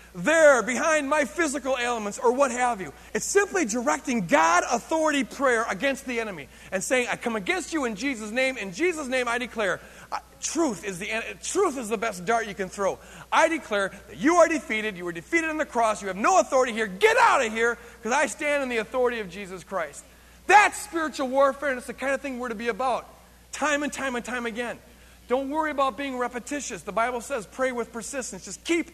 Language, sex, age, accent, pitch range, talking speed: English, male, 40-59, American, 205-270 Hz, 220 wpm